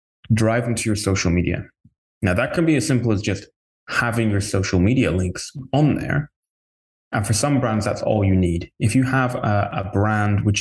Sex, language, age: male, English, 20-39